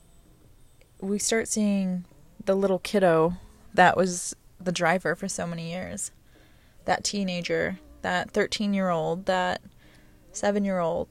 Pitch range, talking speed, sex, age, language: 170-200 Hz, 110 wpm, female, 20-39, English